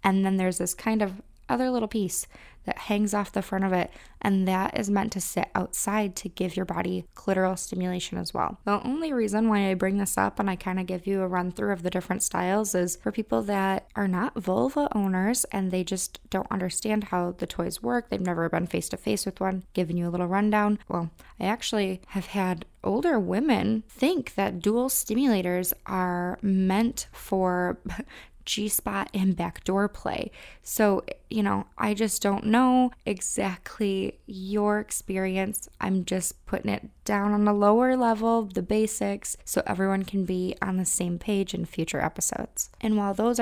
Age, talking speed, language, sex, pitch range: 20-39, 185 wpm, English, female, 185-210 Hz